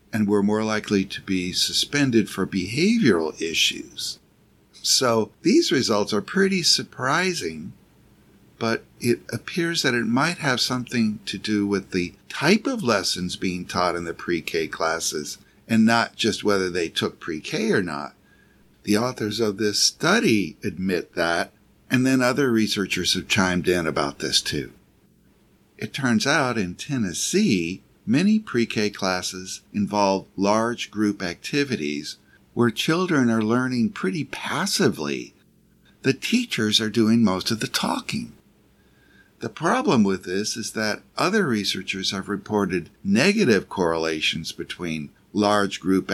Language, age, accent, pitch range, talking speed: English, 60-79, American, 95-125 Hz, 135 wpm